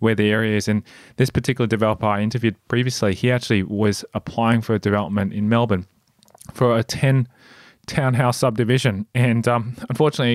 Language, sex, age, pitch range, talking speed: English, male, 20-39, 110-130 Hz, 160 wpm